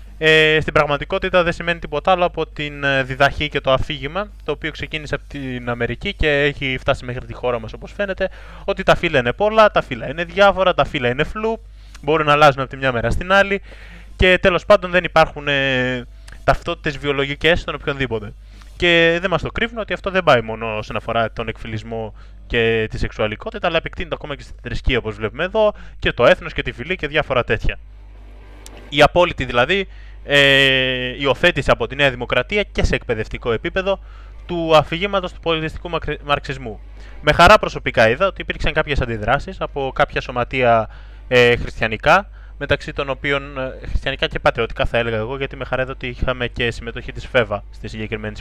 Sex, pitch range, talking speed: male, 120-160 Hz, 180 wpm